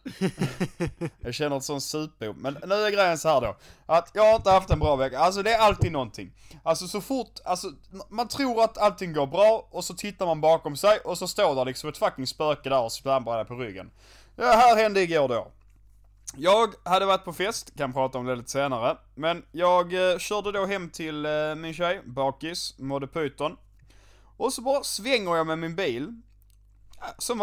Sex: male